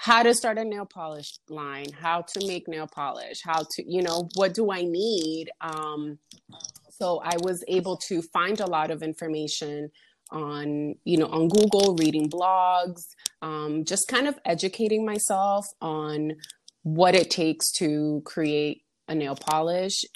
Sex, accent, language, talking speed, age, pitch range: female, American, English, 160 wpm, 20-39, 150-180 Hz